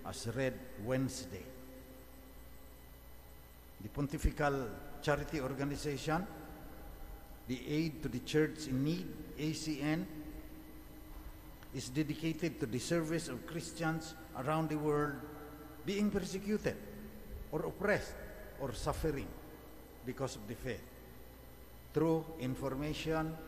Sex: male